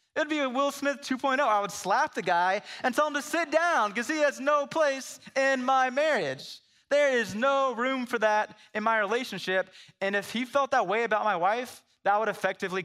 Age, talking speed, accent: 20-39, 215 wpm, American